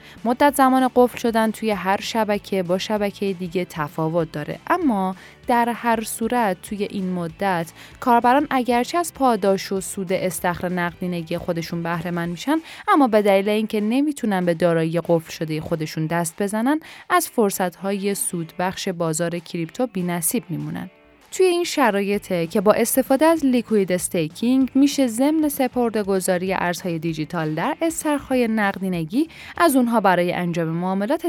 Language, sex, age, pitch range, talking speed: Persian, female, 10-29, 175-245 Hz, 140 wpm